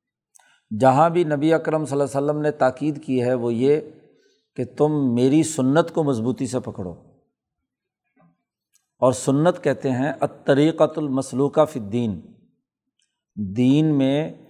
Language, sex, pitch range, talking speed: Urdu, male, 125-150 Hz, 135 wpm